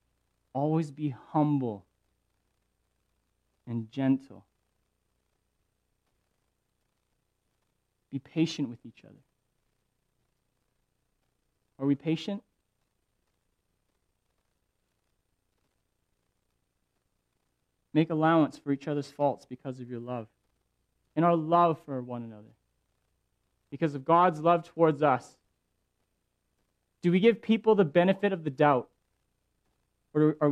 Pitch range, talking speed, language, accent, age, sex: 100-145 Hz, 90 wpm, English, American, 30-49, male